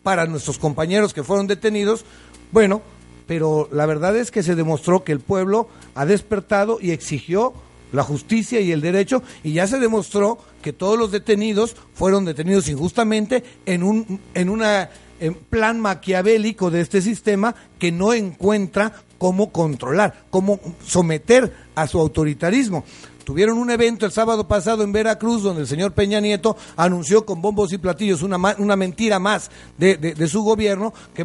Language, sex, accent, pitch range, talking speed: Spanish, male, Mexican, 170-215 Hz, 165 wpm